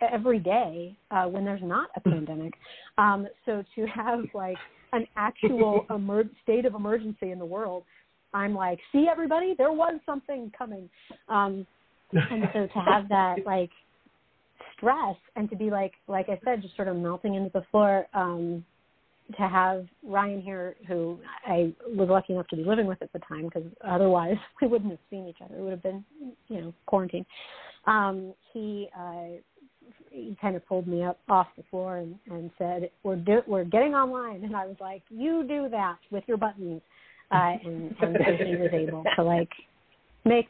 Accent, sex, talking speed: American, female, 180 wpm